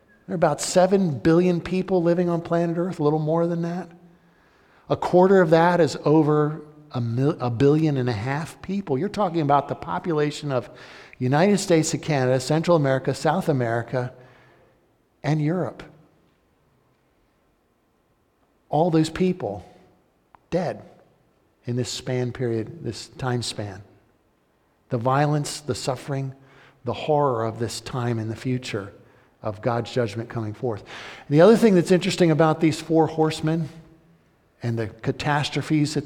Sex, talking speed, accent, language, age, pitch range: male, 145 wpm, American, English, 50-69, 130-170 Hz